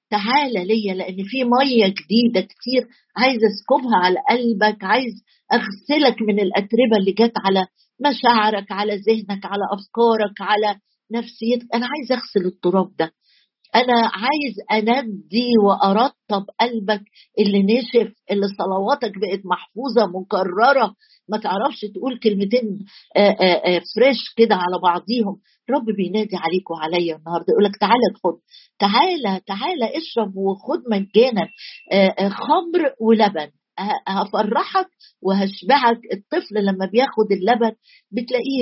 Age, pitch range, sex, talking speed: 50-69, 200-245 Hz, female, 120 wpm